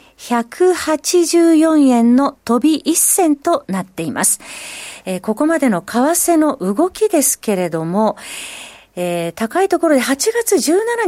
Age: 40-59